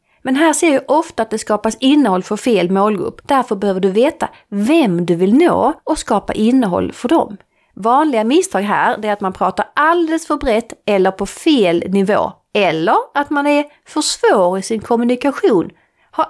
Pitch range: 210-305 Hz